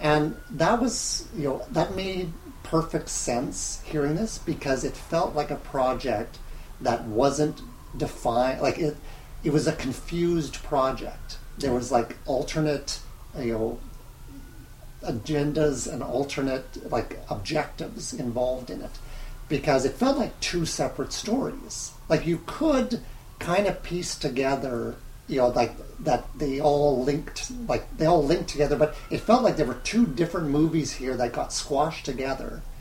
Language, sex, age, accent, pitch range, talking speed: English, male, 40-59, American, 130-160 Hz, 150 wpm